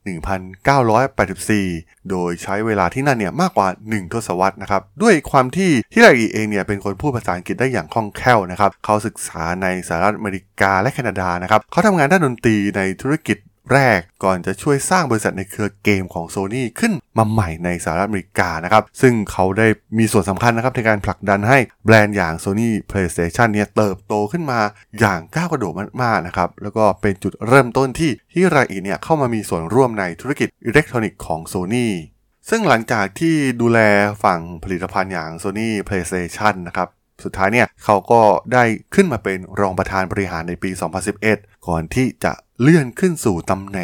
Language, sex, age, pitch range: Thai, male, 20-39, 95-125 Hz